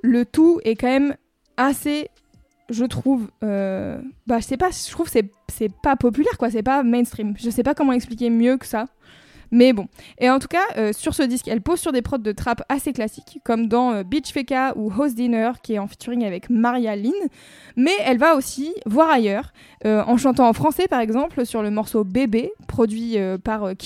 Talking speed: 220 wpm